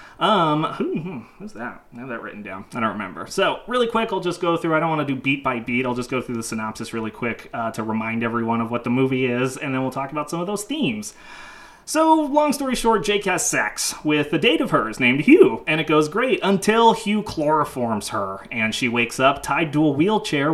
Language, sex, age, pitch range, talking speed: English, male, 30-49, 135-215 Hz, 245 wpm